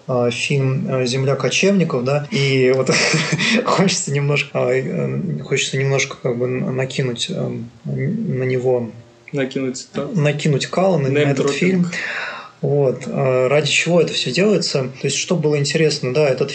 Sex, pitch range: male, 130-165 Hz